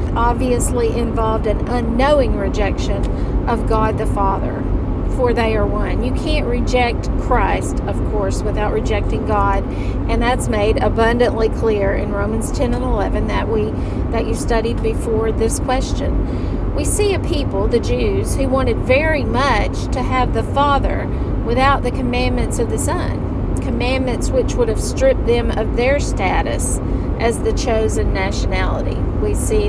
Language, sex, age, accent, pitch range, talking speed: English, female, 40-59, American, 90-105 Hz, 150 wpm